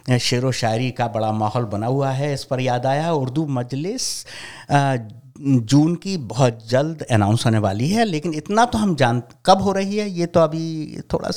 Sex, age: male, 50-69